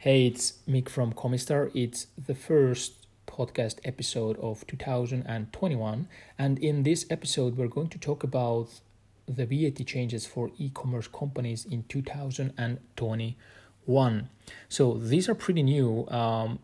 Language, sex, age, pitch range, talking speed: English, male, 30-49, 115-135 Hz, 125 wpm